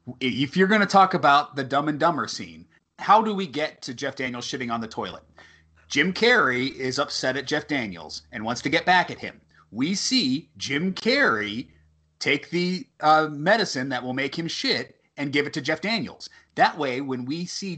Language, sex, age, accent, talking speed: English, male, 30-49, American, 205 wpm